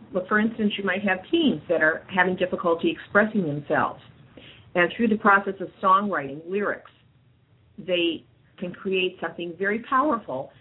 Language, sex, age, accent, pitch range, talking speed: English, female, 50-69, American, 150-190 Hz, 145 wpm